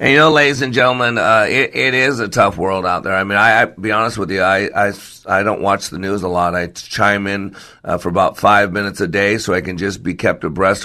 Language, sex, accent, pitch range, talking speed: English, male, American, 90-105 Hz, 270 wpm